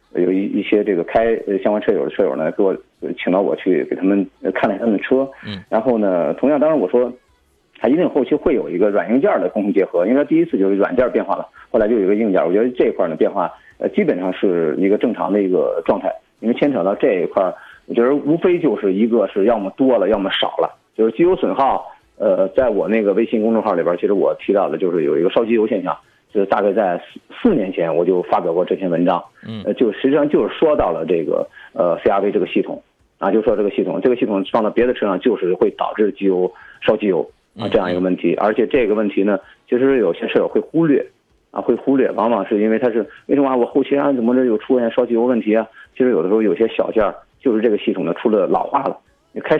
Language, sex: Chinese, male